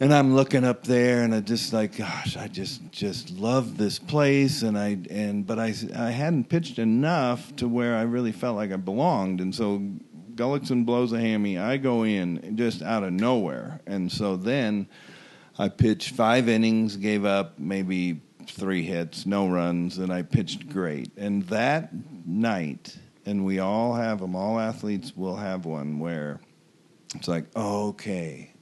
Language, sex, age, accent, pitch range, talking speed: English, male, 50-69, American, 95-115 Hz, 170 wpm